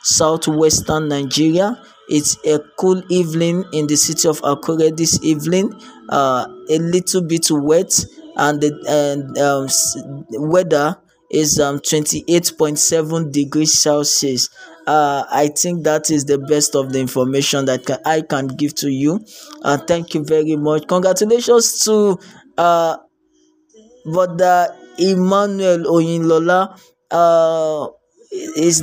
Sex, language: male, English